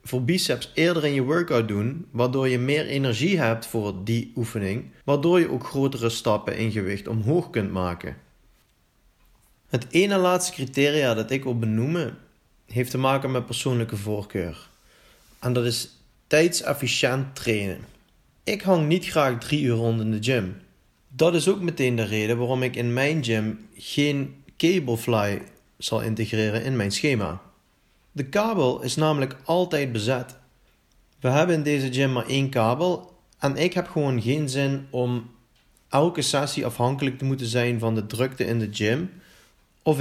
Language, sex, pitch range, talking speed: English, male, 110-145 Hz, 160 wpm